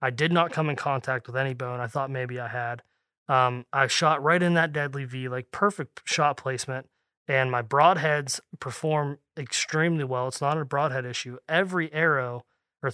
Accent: American